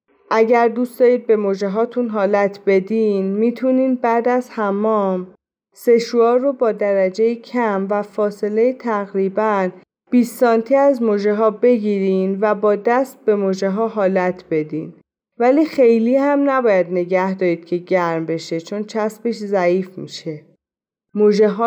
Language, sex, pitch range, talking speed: Persian, female, 185-230 Hz, 125 wpm